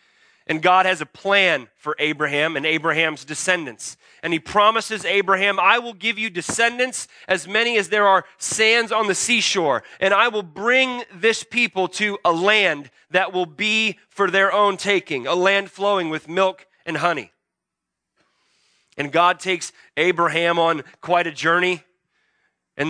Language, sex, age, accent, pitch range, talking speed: English, male, 30-49, American, 165-210 Hz, 155 wpm